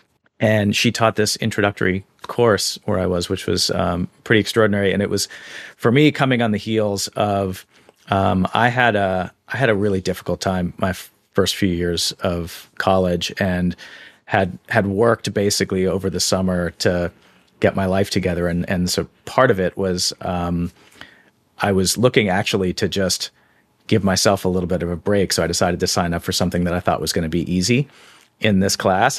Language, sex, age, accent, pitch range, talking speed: English, male, 40-59, American, 90-110 Hz, 195 wpm